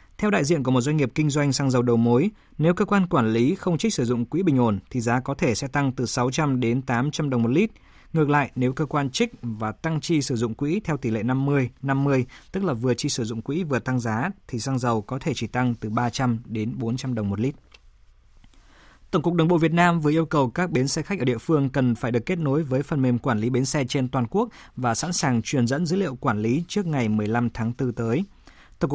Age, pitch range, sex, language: 20-39, 120-155 Hz, male, Vietnamese